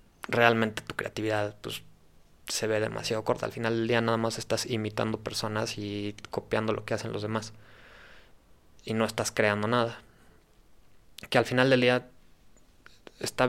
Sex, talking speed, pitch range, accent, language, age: male, 155 wpm, 105-120 Hz, Mexican, Spanish, 20-39